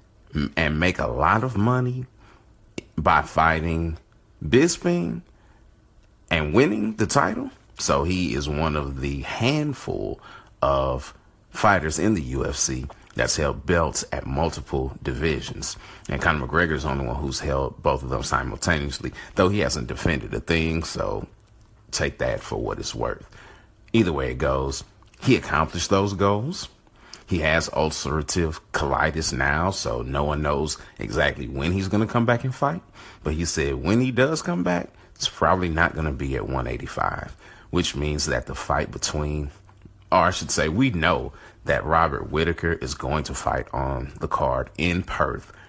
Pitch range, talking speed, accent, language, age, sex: 70-100 Hz, 160 wpm, American, English, 40-59, male